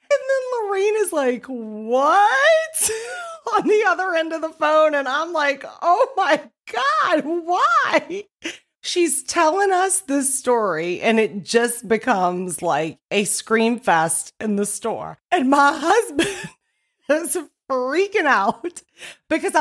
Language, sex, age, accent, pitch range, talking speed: English, female, 30-49, American, 240-360 Hz, 130 wpm